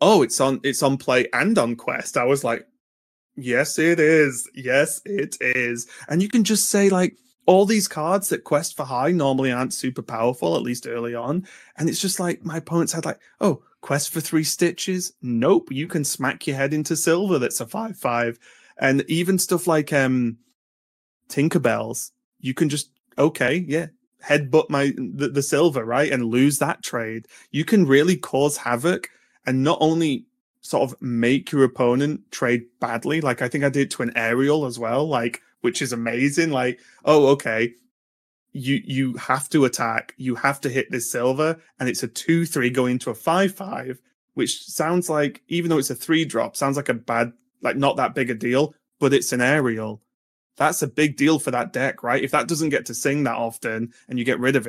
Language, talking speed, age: English, 200 wpm, 20-39